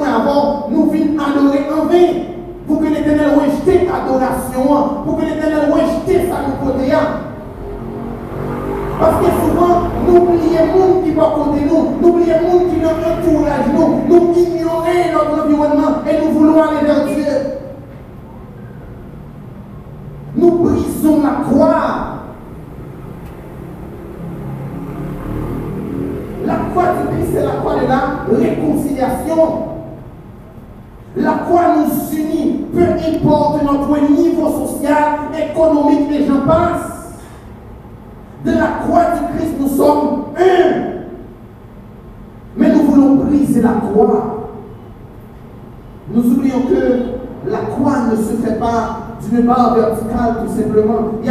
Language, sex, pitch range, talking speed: French, male, 240-320 Hz, 115 wpm